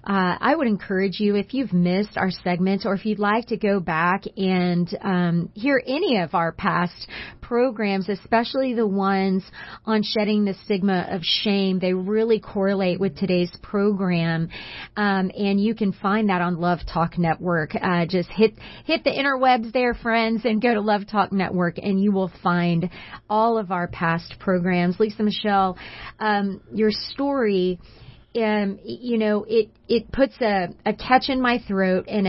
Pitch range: 185-220 Hz